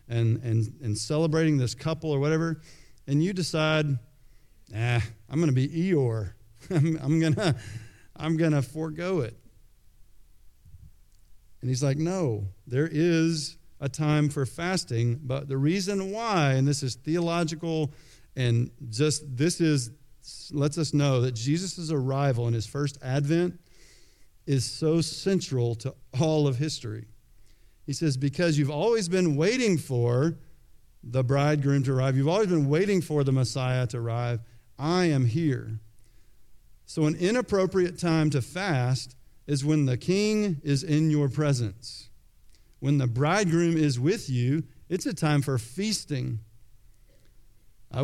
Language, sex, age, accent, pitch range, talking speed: English, male, 50-69, American, 120-160 Hz, 140 wpm